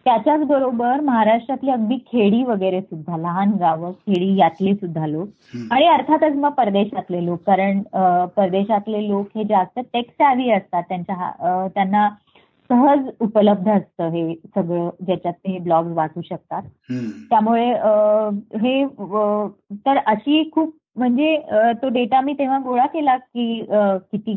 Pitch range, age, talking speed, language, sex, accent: 195-270 Hz, 20-39, 125 wpm, Marathi, female, native